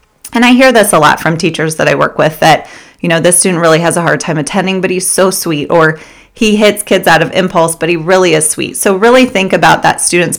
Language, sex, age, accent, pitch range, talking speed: English, female, 30-49, American, 165-205 Hz, 260 wpm